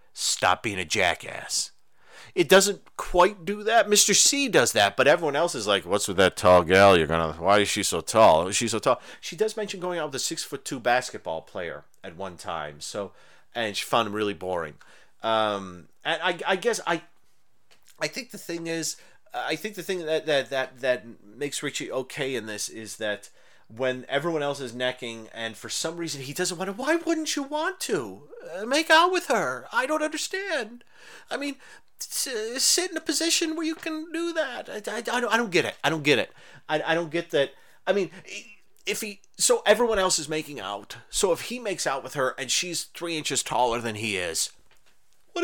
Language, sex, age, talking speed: English, male, 30-49, 210 wpm